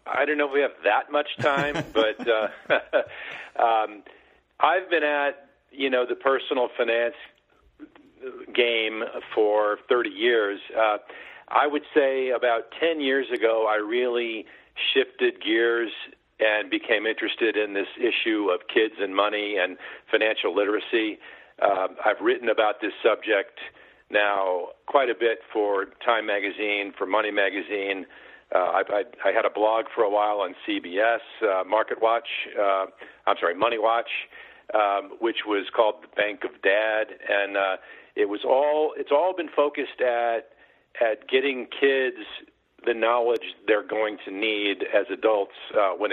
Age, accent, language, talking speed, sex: 50-69, American, English, 150 wpm, male